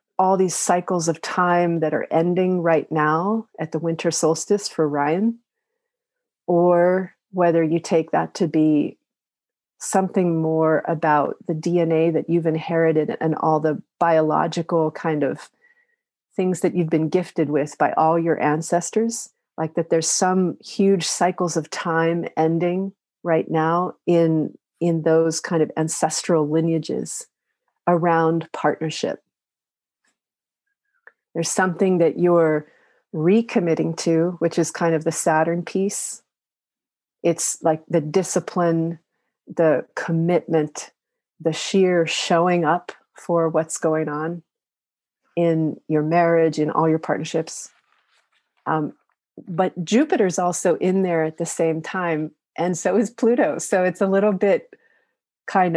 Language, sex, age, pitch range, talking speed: English, female, 40-59, 160-185 Hz, 130 wpm